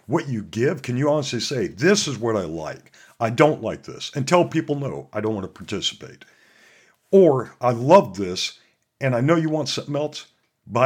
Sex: male